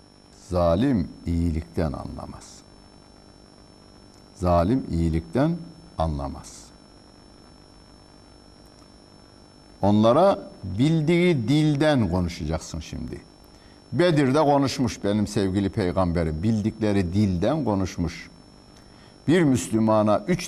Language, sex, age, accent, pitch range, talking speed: Turkish, male, 60-79, native, 95-150 Hz, 65 wpm